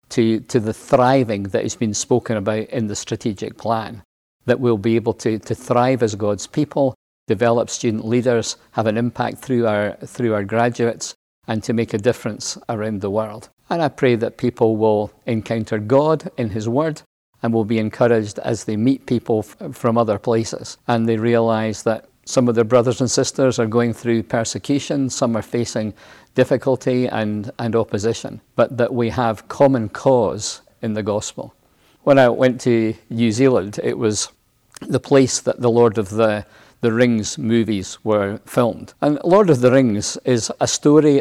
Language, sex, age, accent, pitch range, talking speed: English, male, 50-69, British, 110-125 Hz, 180 wpm